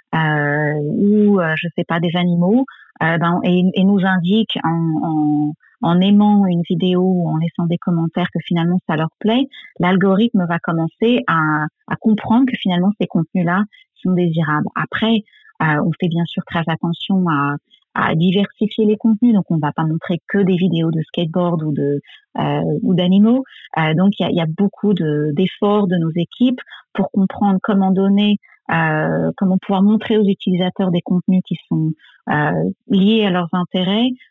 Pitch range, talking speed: 170-205 Hz, 180 wpm